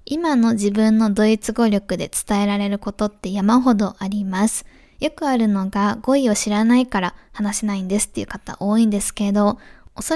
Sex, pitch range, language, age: female, 200-230 Hz, Japanese, 20-39